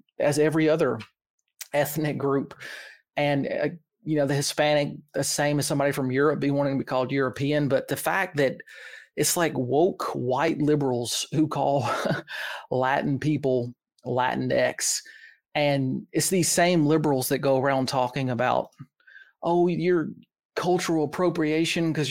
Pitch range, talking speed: 135-160 Hz, 140 wpm